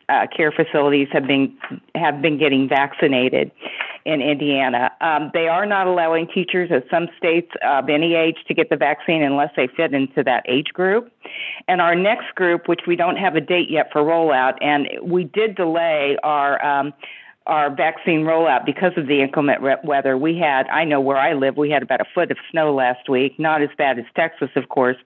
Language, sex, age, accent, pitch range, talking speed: English, female, 50-69, American, 135-170 Hz, 200 wpm